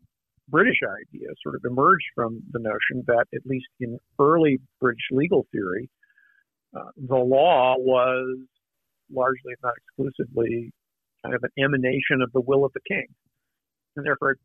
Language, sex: English, male